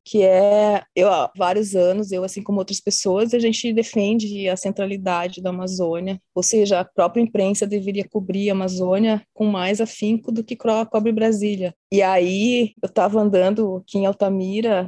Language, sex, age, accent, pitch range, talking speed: Portuguese, female, 20-39, Brazilian, 195-240 Hz, 165 wpm